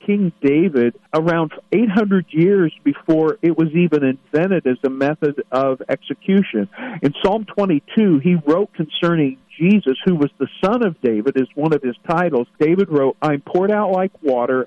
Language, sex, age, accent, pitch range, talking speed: English, male, 50-69, American, 135-180 Hz, 165 wpm